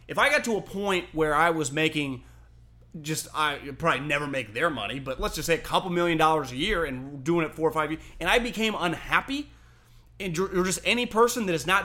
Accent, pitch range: American, 155-225 Hz